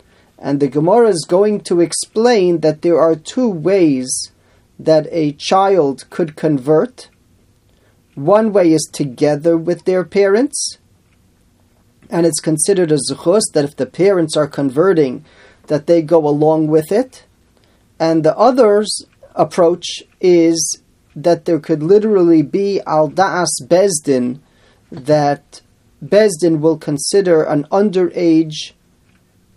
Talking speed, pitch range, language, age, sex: 120 wpm, 150-190 Hz, English, 40-59, male